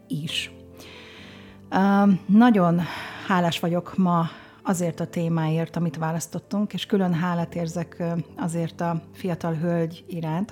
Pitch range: 160-180 Hz